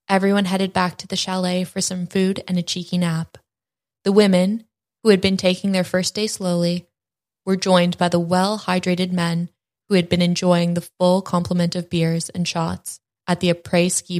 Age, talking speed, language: 20-39, 185 wpm, English